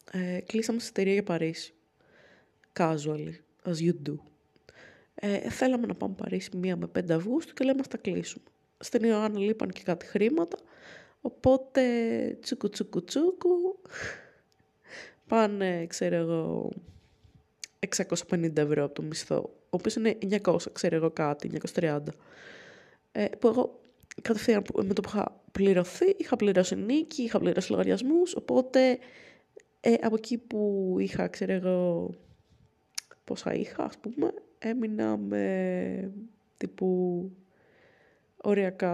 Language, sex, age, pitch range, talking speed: Greek, female, 20-39, 175-235 Hz, 125 wpm